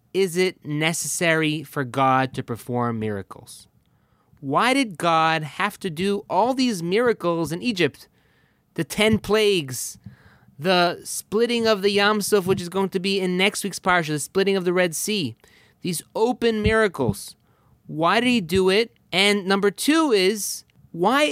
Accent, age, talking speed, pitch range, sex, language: American, 30-49, 155 wpm, 150-200 Hz, male, English